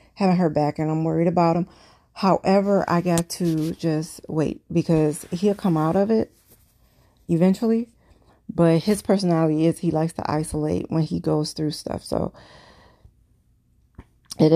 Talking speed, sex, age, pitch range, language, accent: 150 wpm, female, 40-59, 155-180 Hz, English, American